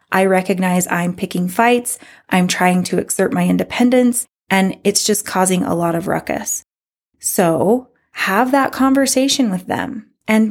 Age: 20-39